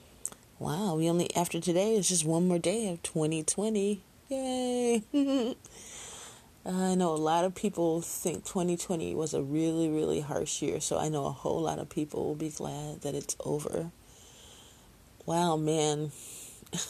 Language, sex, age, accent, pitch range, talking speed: English, female, 30-49, American, 150-205 Hz, 155 wpm